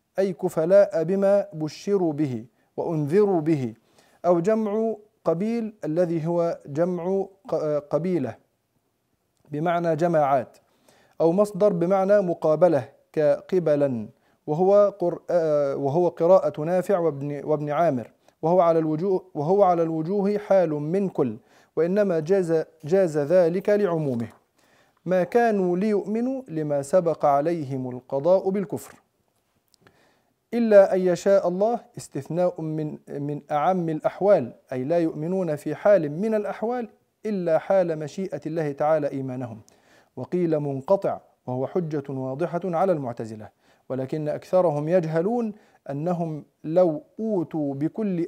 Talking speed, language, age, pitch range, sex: 105 wpm, Arabic, 40-59, 150-195 Hz, male